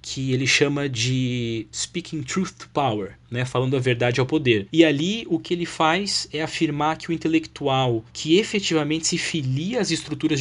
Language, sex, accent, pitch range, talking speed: Portuguese, male, Brazilian, 125-160 Hz, 175 wpm